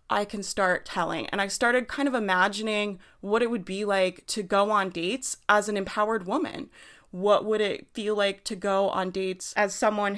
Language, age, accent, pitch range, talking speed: English, 30-49, American, 185-230 Hz, 200 wpm